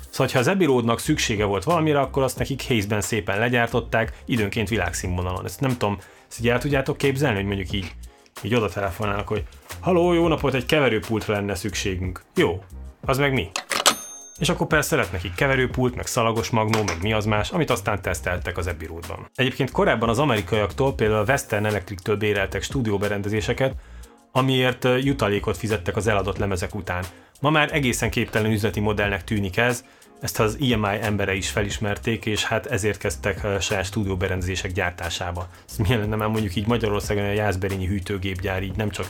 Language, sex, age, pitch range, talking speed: Hungarian, male, 30-49, 100-120 Hz, 165 wpm